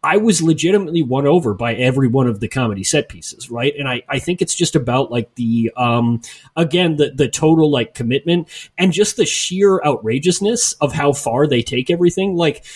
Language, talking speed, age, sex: English, 200 wpm, 30-49, male